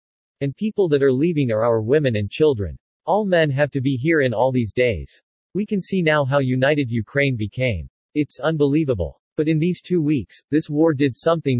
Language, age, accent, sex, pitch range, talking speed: English, 40-59, American, male, 120-155 Hz, 200 wpm